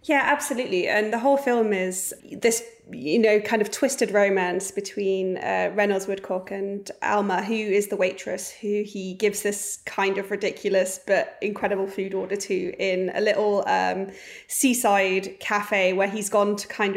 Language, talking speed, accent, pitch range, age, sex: English, 165 wpm, British, 195-230 Hz, 20-39, female